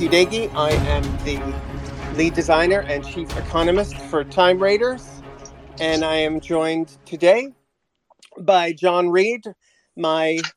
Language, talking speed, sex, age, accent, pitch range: English, 115 wpm, male, 40-59, American, 155-205 Hz